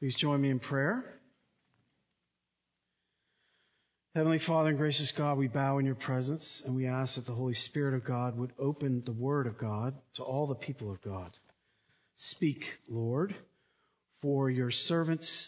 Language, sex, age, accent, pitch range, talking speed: English, male, 50-69, American, 130-180 Hz, 160 wpm